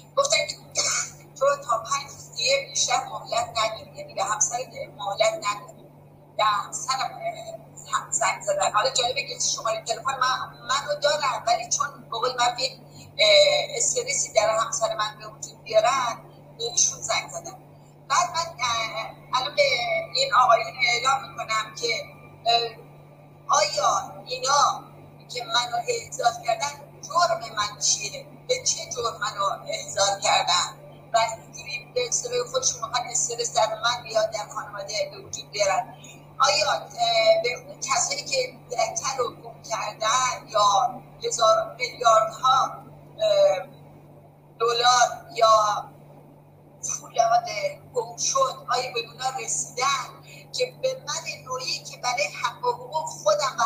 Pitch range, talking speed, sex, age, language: 225-340 Hz, 80 wpm, female, 40-59, Persian